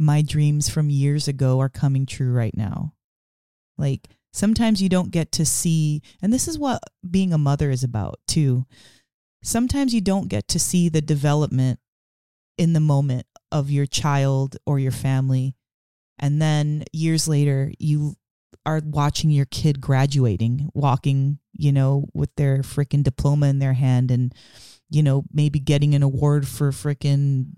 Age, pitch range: 30-49, 135-165 Hz